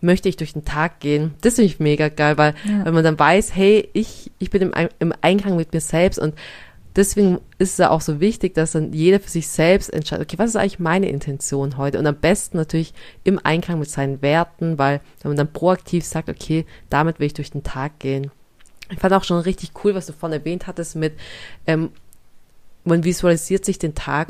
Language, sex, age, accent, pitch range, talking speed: German, female, 20-39, German, 155-185 Hz, 220 wpm